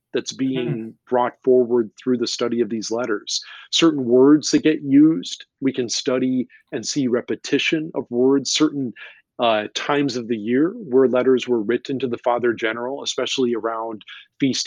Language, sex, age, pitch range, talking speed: English, male, 40-59, 115-130 Hz, 165 wpm